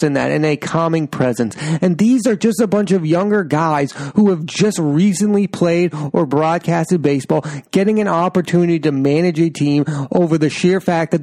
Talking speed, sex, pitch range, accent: 185 wpm, male, 145-190 Hz, American